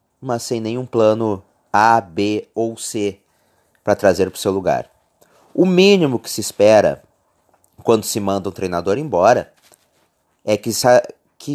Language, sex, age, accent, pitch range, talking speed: Portuguese, male, 30-49, Brazilian, 95-130 Hz, 145 wpm